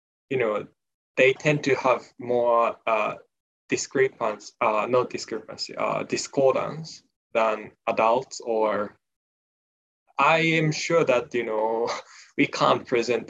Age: 10-29